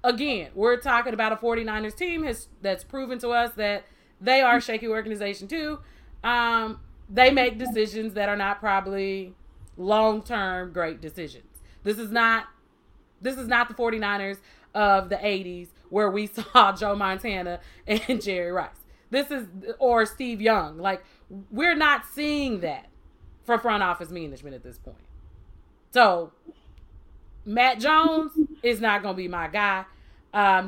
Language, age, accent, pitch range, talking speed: English, 30-49, American, 200-265 Hz, 145 wpm